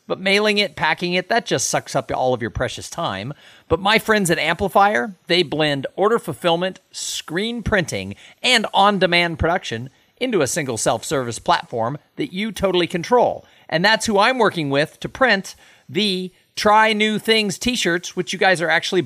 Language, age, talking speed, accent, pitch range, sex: English, 50-69, 175 wpm, American, 145-205 Hz, male